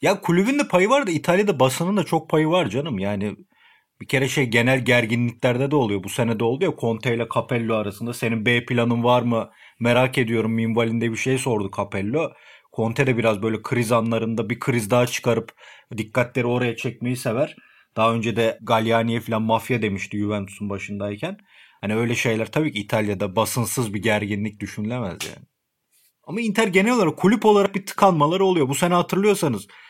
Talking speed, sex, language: 175 wpm, male, Turkish